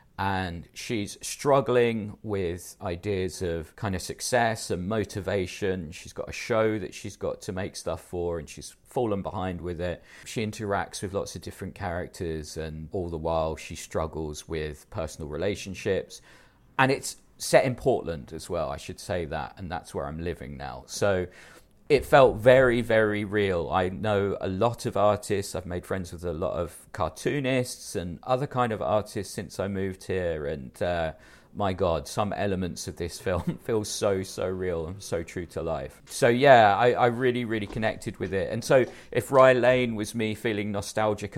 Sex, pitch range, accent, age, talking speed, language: male, 85-110 Hz, British, 40-59, 185 wpm, English